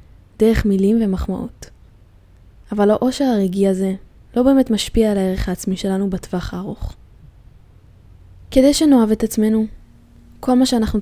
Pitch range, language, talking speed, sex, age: 190-275 Hz, Hebrew, 125 wpm, female, 10-29